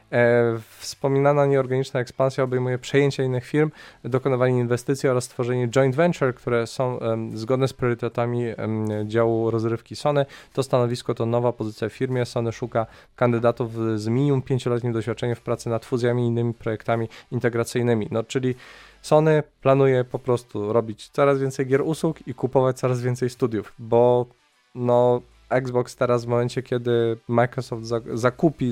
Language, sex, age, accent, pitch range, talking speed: Polish, male, 20-39, native, 115-135 Hz, 145 wpm